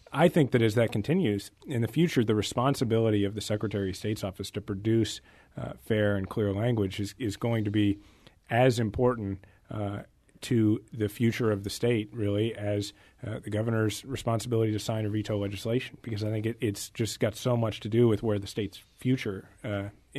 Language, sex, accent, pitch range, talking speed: English, male, American, 100-120 Hz, 195 wpm